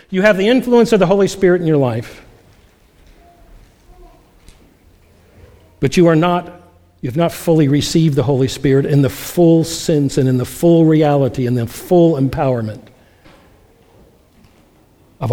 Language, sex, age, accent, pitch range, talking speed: English, male, 60-79, American, 120-185 Hz, 145 wpm